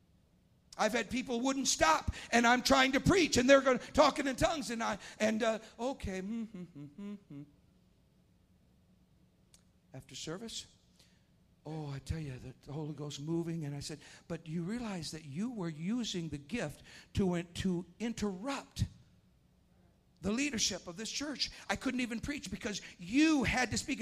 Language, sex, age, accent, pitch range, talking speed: English, male, 60-79, American, 170-240 Hz, 150 wpm